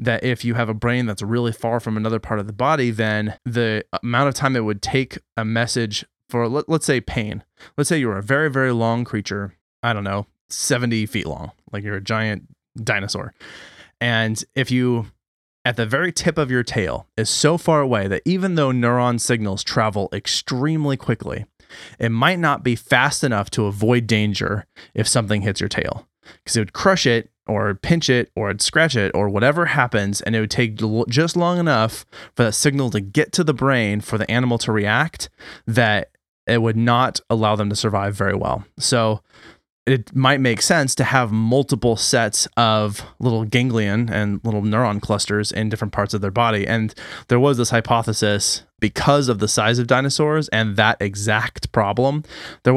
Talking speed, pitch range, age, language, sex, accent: 190 wpm, 105-125 Hz, 20-39, English, male, American